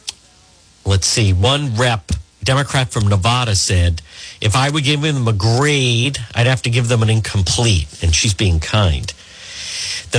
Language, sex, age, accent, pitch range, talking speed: English, male, 50-69, American, 95-135 Hz, 160 wpm